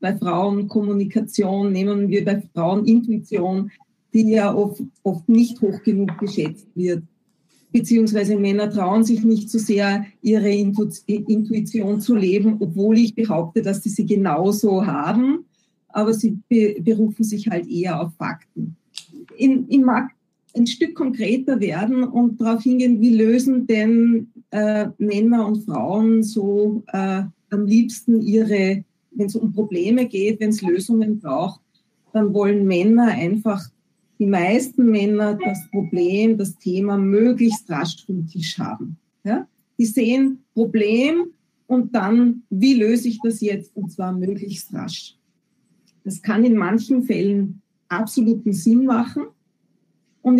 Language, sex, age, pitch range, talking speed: German, female, 40-59, 200-235 Hz, 135 wpm